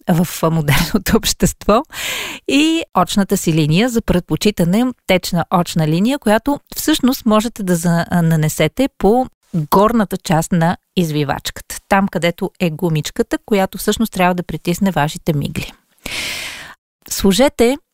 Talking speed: 115 wpm